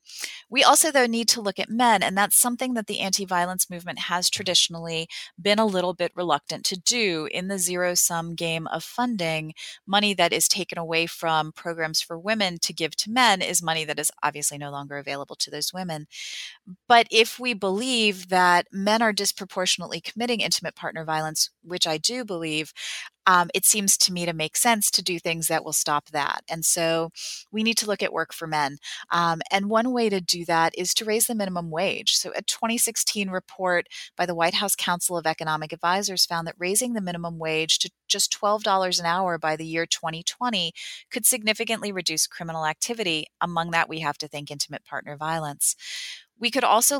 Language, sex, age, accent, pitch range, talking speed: English, female, 30-49, American, 160-205 Hz, 195 wpm